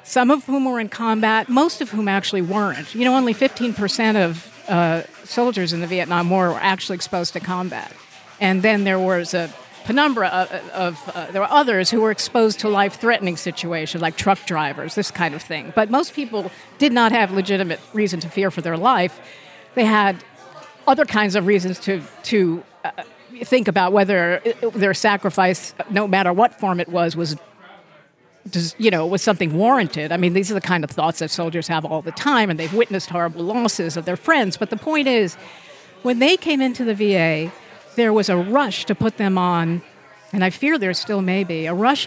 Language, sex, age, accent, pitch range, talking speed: English, female, 50-69, American, 180-230 Hz, 200 wpm